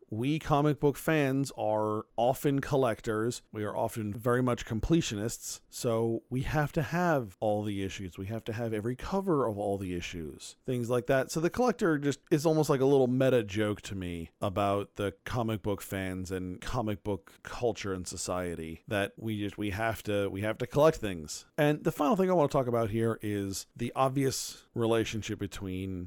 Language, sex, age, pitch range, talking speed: English, male, 40-59, 100-130 Hz, 195 wpm